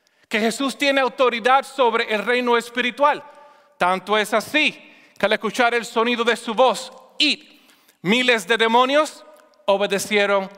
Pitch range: 210-260 Hz